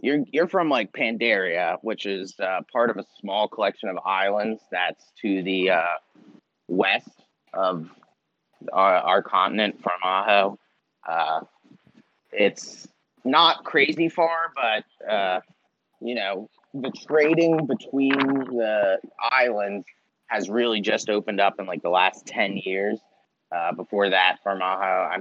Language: English